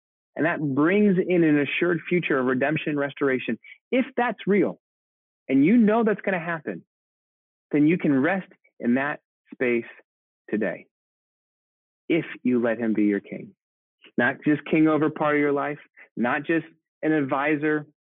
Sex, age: male, 30-49